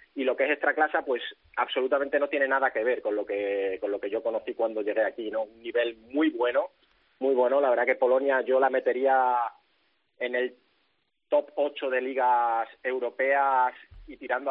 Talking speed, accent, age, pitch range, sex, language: 195 wpm, Spanish, 20-39, 125-150 Hz, male, Spanish